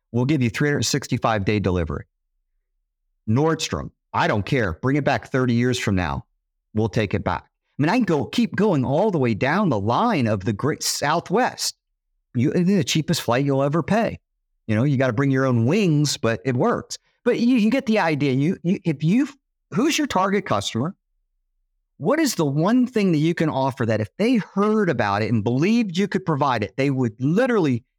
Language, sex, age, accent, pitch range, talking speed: English, male, 50-69, American, 100-150 Hz, 205 wpm